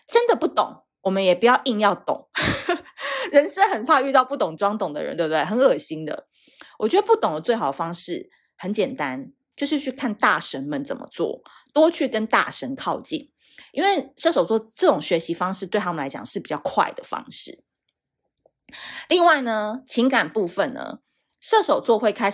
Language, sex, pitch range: Chinese, female, 195-280 Hz